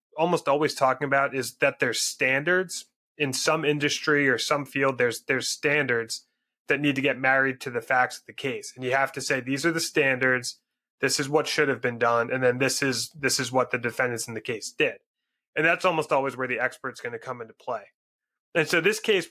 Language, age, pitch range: English, 30-49, 130-150 Hz